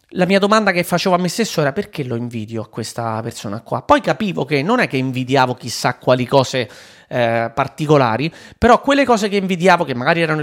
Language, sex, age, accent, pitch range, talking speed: Italian, male, 30-49, native, 140-195 Hz, 205 wpm